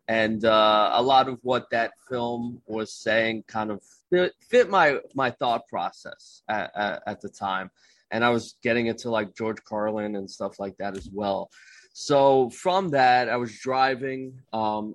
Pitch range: 100-120 Hz